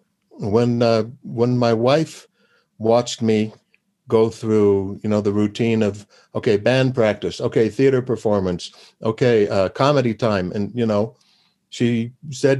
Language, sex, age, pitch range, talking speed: English, male, 60-79, 100-130 Hz, 140 wpm